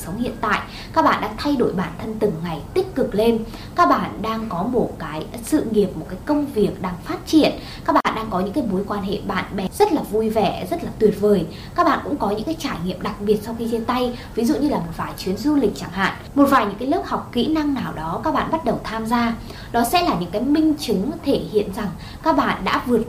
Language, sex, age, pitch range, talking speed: Vietnamese, female, 20-39, 190-275 Hz, 270 wpm